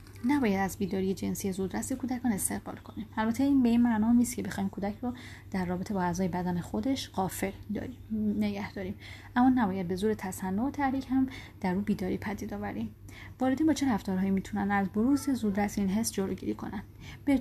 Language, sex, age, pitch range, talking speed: Persian, female, 30-49, 185-245 Hz, 185 wpm